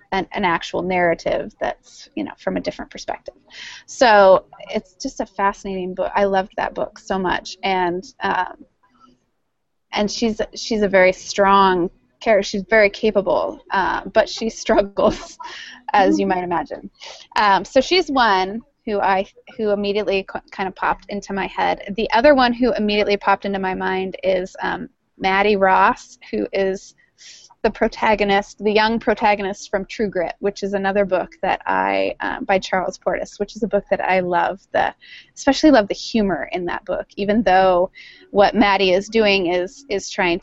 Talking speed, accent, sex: 170 wpm, American, female